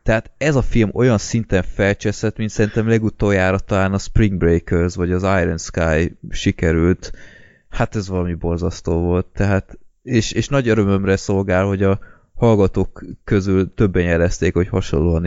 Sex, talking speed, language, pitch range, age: male, 145 wpm, Hungarian, 90-110 Hz, 20-39